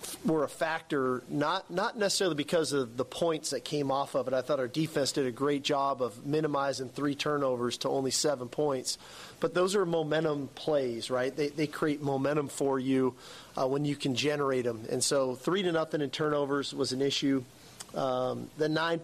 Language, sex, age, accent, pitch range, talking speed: English, male, 40-59, American, 130-150 Hz, 195 wpm